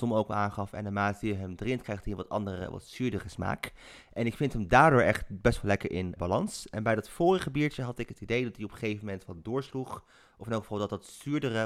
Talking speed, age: 270 wpm, 30-49